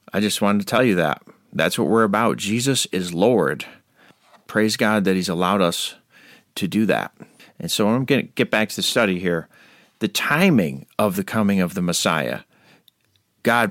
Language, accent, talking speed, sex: English, American, 190 wpm, male